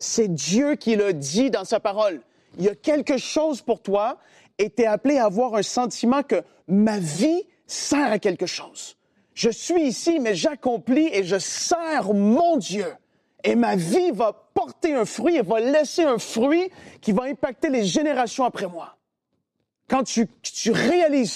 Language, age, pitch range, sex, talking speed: French, 40-59, 170-245 Hz, male, 175 wpm